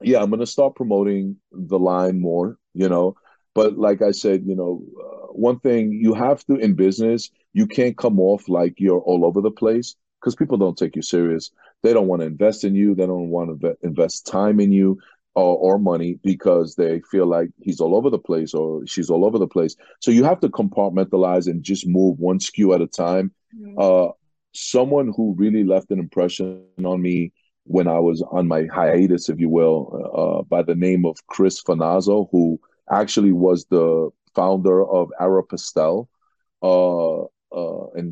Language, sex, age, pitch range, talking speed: English, male, 40-59, 85-100 Hz, 195 wpm